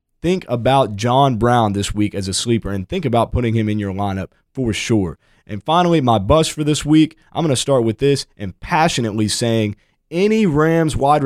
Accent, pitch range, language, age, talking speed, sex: American, 115-160 Hz, English, 20-39, 205 wpm, male